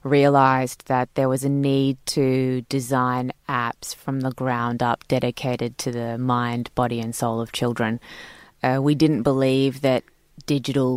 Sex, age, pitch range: female, 20-39, 125-140 Hz